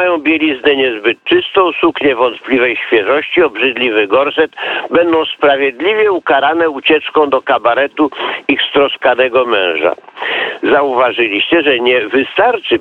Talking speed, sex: 105 wpm, male